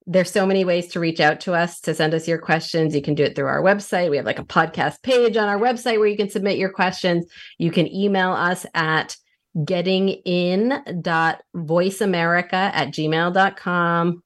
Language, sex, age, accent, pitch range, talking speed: English, female, 30-49, American, 170-210 Hz, 185 wpm